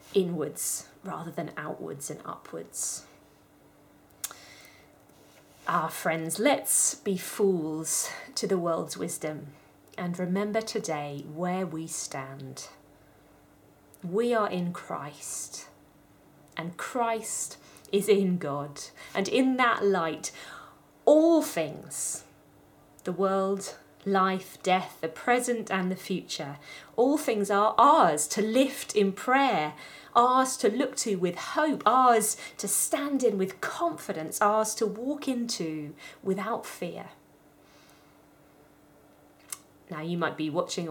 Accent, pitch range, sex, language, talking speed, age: British, 160-225 Hz, female, English, 110 wpm, 30-49